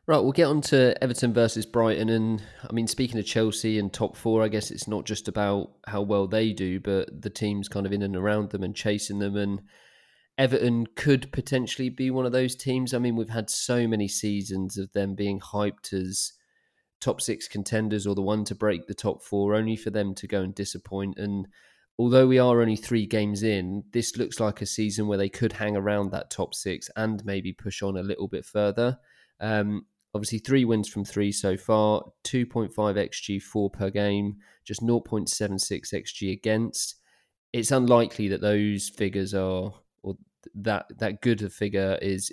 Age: 20-39